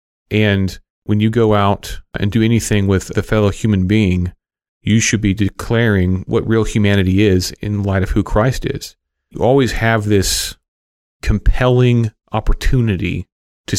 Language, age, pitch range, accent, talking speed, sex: English, 40-59, 90-110 Hz, American, 150 wpm, male